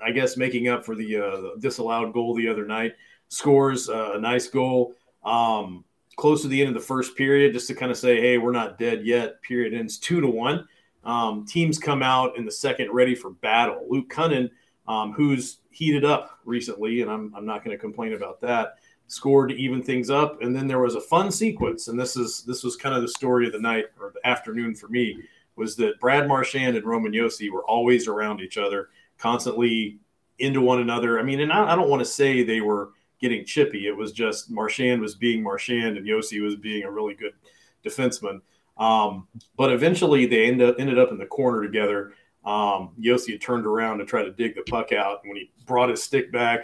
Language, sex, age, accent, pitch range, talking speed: English, male, 40-59, American, 110-130 Hz, 215 wpm